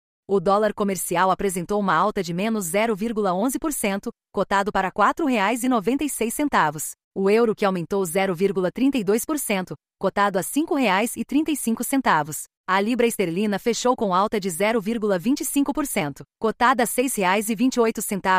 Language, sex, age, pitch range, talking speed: Portuguese, female, 30-49, 195-245 Hz, 105 wpm